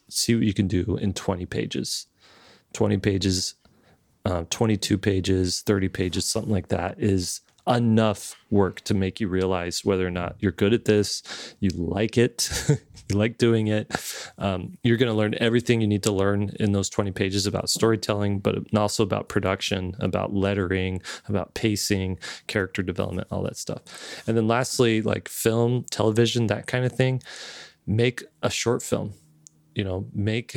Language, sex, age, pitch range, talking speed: English, male, 30-49, 95-115 Hz, 165 wpm